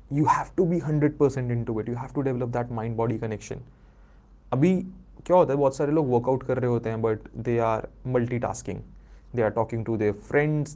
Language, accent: Hindi, native